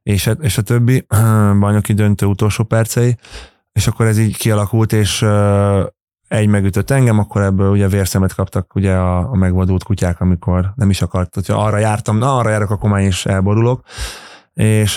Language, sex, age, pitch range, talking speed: Hungarian, male, 20-39, 95-105 Hz, 170 wpm